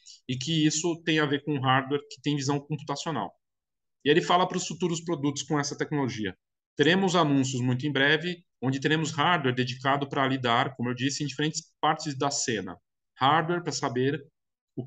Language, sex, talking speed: Portuguese, male, 180 wpm